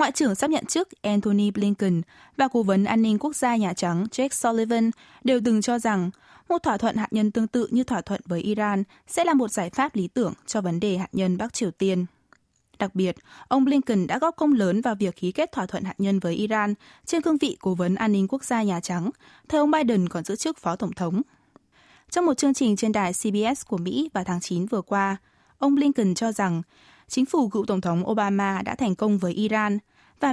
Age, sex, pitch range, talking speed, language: 20-39, female, 190-250 Hz, 230 wpm, Vietnamese